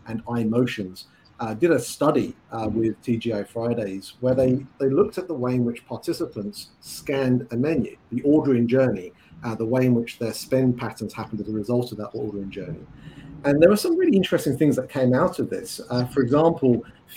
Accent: British